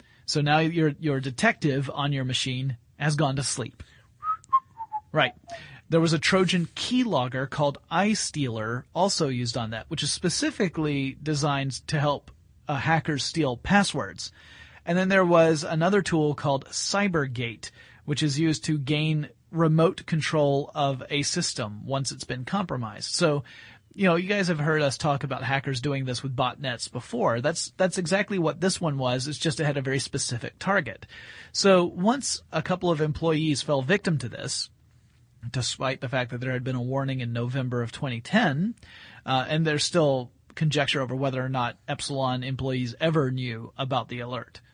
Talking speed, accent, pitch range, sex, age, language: 170 wpm, American, 125-160 Hz, male, 30-49, English